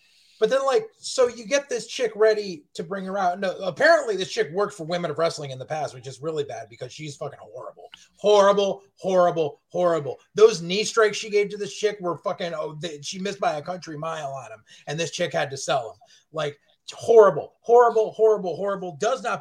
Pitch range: 185-275 Hz